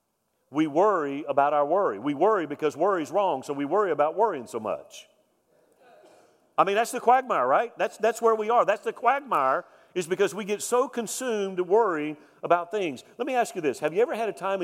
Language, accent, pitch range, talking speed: English, American, 160-210 Hz, 215 wpm